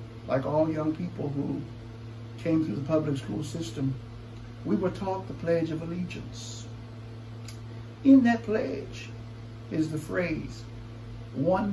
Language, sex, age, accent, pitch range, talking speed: English, male, 60-79, American, 115-140 Hz, 130 wpm